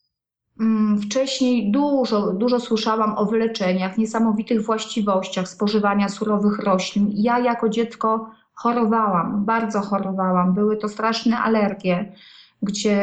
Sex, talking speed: female, 100 wpm